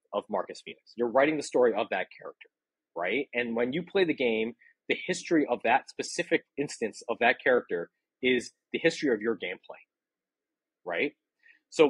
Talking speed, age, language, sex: 170 wpm, 30-49, English, male